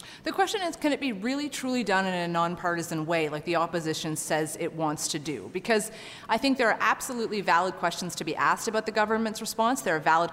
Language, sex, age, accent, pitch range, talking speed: English, female, 30-49, American, 180-240 Hz, 225 wpm